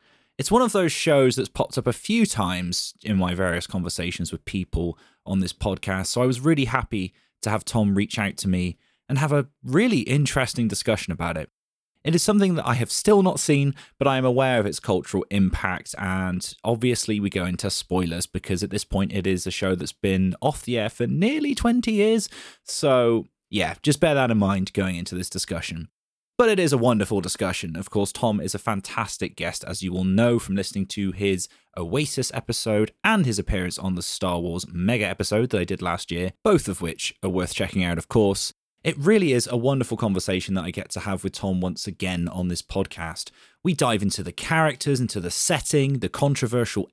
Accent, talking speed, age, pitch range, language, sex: British, 210 wpm, 20-39, 95-140 Hz, English, male